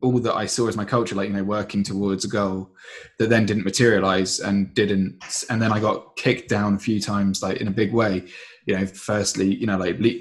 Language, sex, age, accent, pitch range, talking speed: English, male, 20-39, British, 100-120 Hz, 235 wpm